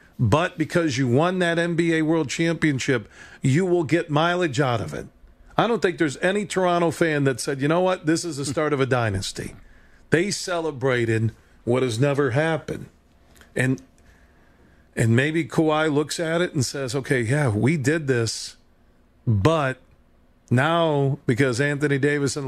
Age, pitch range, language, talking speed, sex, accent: 40-59, 110-150 Hz, English, 160 wpm, male, American